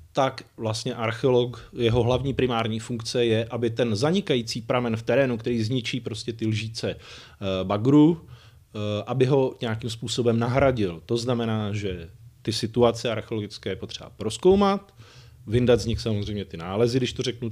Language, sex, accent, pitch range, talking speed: Czech, male, native, 110-130 Hz, 145 wpm